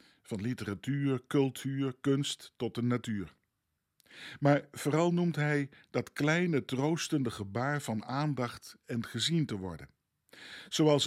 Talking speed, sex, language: 120 wpm, male, Dutch